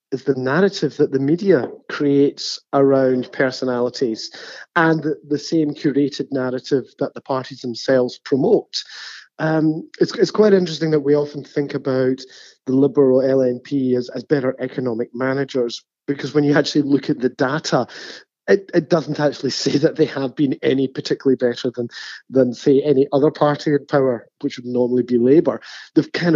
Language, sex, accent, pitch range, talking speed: English, male, British, 130-150 Hz, 165 wpm